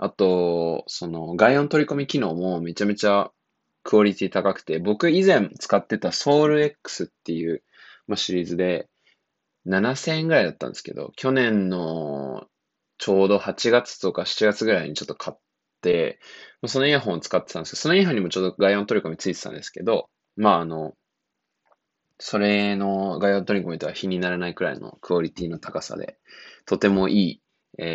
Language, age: Japanese, 20-39